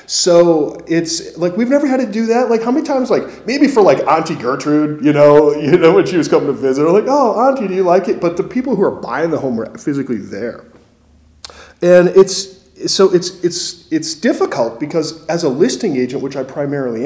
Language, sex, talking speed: English, male, 220 wpm